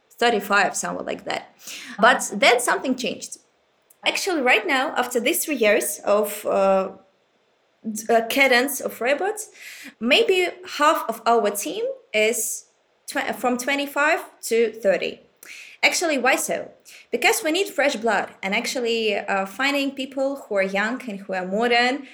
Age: 20-39